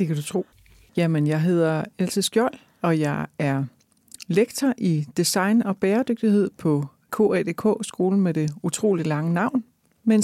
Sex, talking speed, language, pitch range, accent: female, 145 wpm, Danish, 175-230 Hz, native